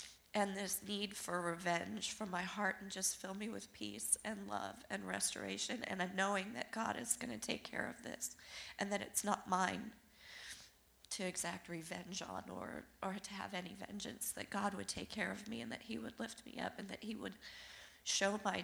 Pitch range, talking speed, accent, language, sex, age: 175-215 Hz, 210 wpm, American, English, female, 40-59